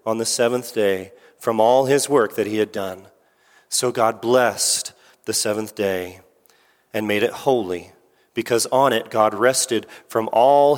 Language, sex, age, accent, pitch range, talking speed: English, male, 40-59, American, 125-185 Hz, 160 wpm